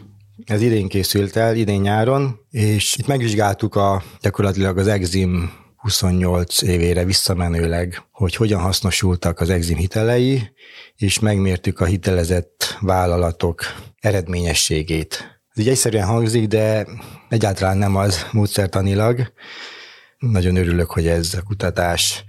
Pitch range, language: 90-110 Hz, Hungarian